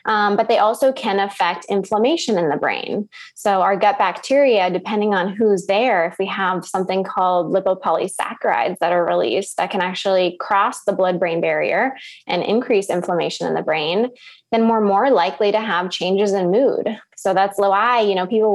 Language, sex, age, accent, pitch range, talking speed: English, female, 20-39, American, 185-220 Hz, 180 wpm